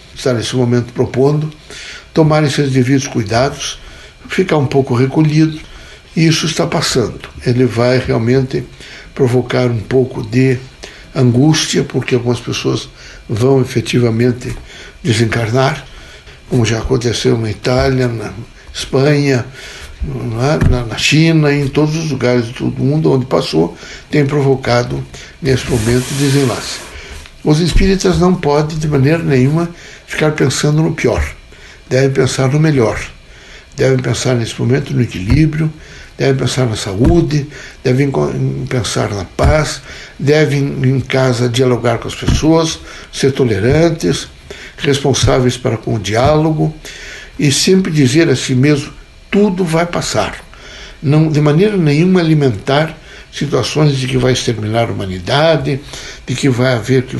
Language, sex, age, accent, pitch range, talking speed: Portuguese, male, 60-79, Brazilian, 125-150 Hz, 125 wpm